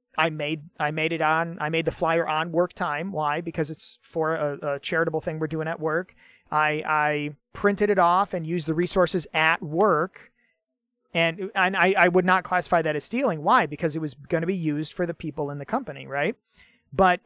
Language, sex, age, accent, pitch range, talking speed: English, male, 30-49, American, 155-205 Hz, 215 wpm